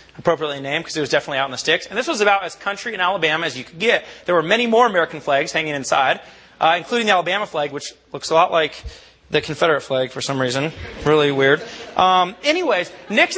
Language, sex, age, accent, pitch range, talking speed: English, male, 30-49, American, 160-215 Hz, 230 wpm